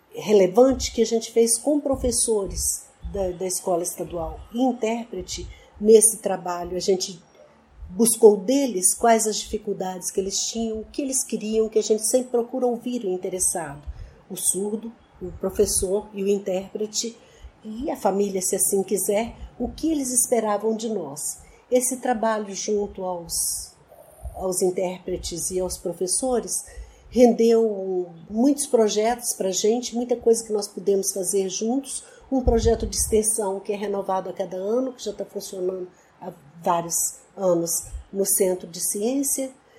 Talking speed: 150 wpm